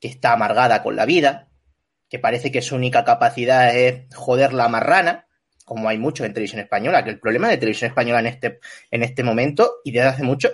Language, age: Spanish, 30-49